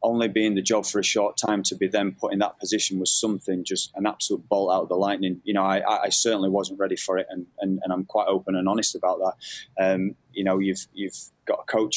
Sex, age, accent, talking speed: male, 20-39, British, 260 wpm